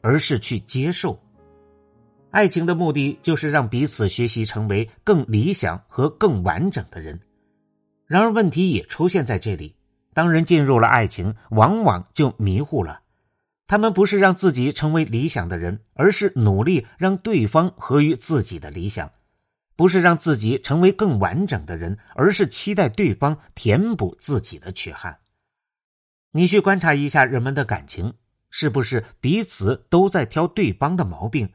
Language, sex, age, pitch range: Chinese, male, 50-69, 110-175 Hz